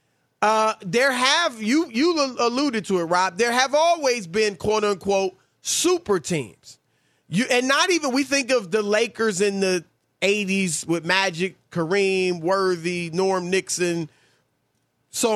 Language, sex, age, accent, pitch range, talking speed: English, male, 30-49, American, 175-220 Hz, 140 wpm